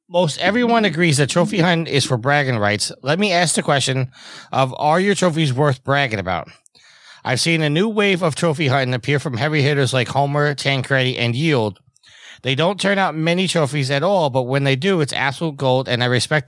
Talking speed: 210 wpm